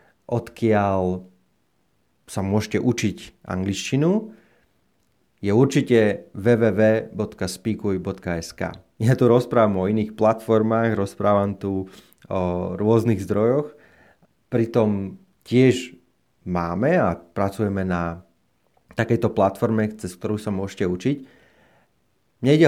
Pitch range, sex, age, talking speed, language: 95-120 Hz, male, 30-49, 85 wpm, Slovak